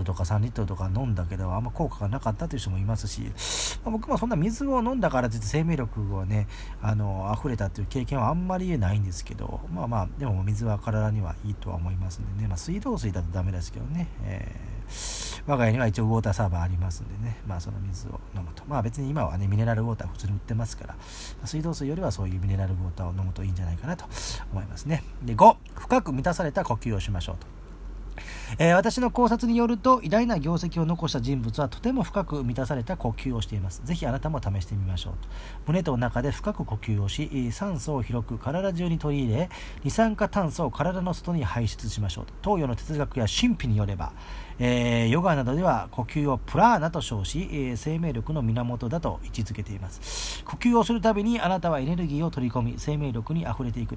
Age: 40-59